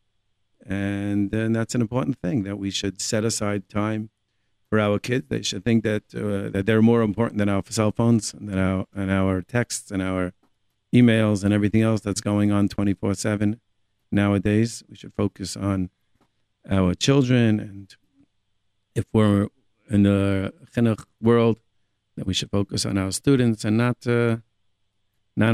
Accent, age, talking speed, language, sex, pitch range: American, 50-69, 160 wpm, English, male, 100-115 Hz